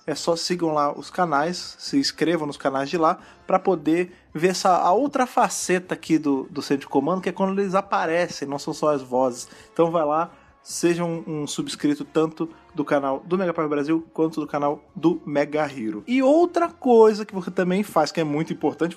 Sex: male